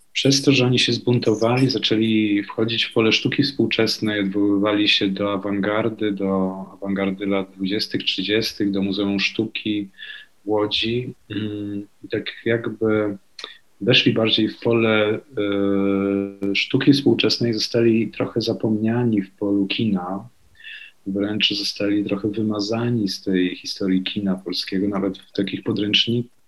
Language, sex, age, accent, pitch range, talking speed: Polish, male, 40-59, native, 95-115 Hz, 120 wpm